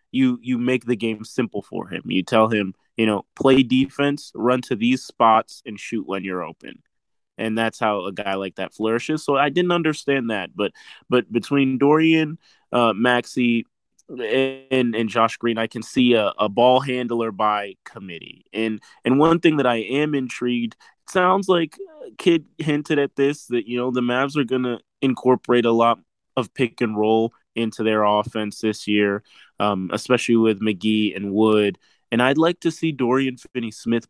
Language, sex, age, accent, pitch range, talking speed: English, male, 20-39, American, 110-135 Hz, 180 wpm